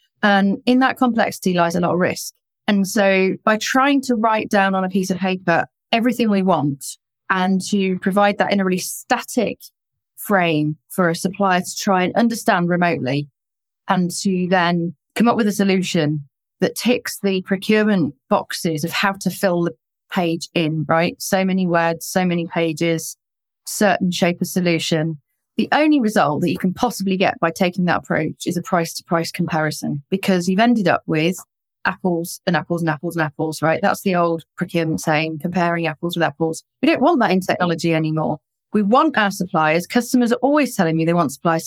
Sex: female